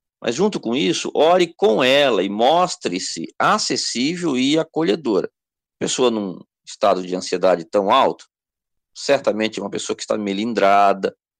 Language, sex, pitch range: Portuguese, male, 100-135 Hz